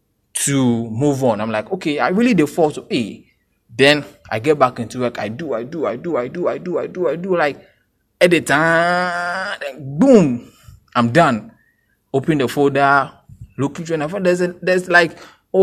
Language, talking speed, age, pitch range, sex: English, 185 wpm, 20-39, 120-170 Hz, male